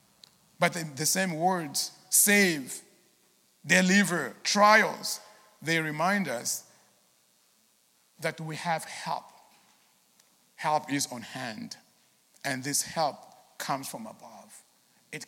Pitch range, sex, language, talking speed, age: 210-290 Hz, male, English, 100 wpm, 50-69